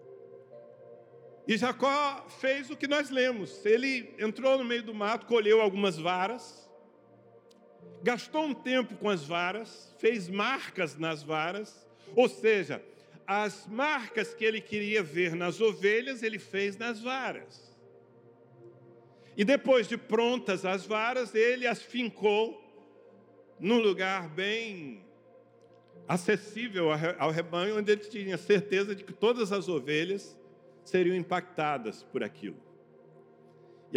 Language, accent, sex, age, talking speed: Portuguese, Brazilian, male, 60-79, 120 wpm